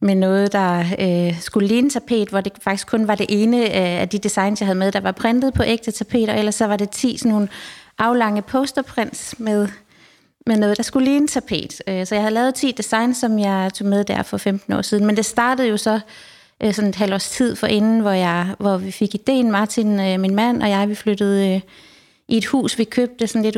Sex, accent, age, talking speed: female, native, 30-49, 235 wpm